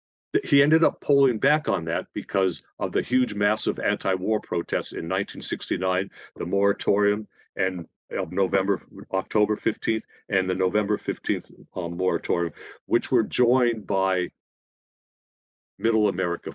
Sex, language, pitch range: male, English, 95-115 Hz